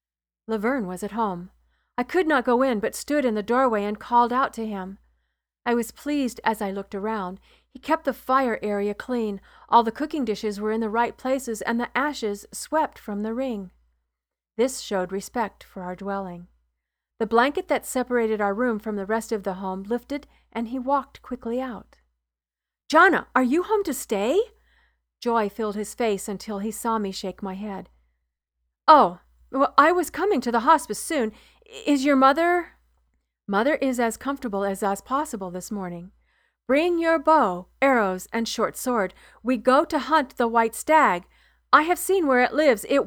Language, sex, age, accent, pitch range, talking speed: English, female, 40-59, American, 195-265 Hz, 180 wpm